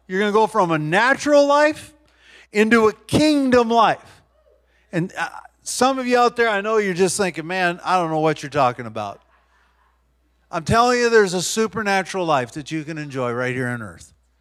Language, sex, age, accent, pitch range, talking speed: English, male, 40-59, American, 160-225 Hz, 190 wpm